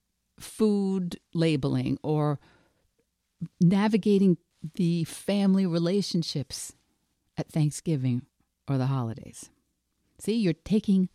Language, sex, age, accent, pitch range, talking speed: English, female, 50-69, American, 145-200 Hz, 80 wpm